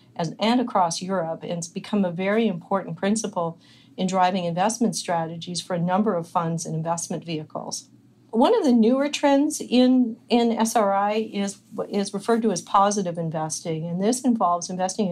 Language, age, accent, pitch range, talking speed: English, 40-59, American, 170-205 Hz, 165 wpm